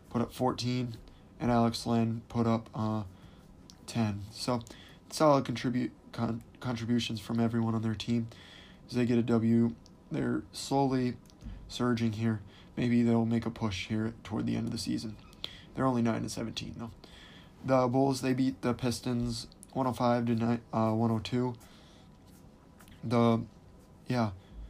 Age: 20-39